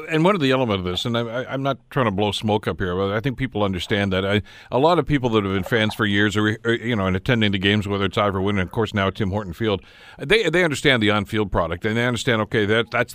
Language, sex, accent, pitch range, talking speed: English, male, American, 105-135 Hz, 295 wpm